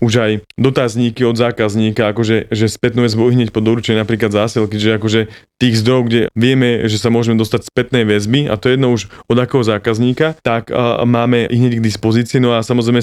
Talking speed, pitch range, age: 205 wpm, 110-120 Hz, 20-39